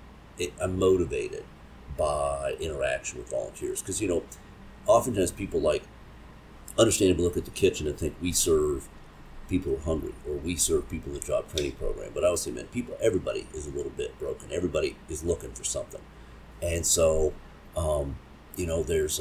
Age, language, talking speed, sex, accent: 50-69, English, 180 wpm, male, American